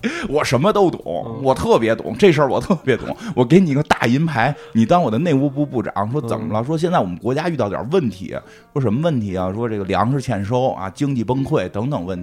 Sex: male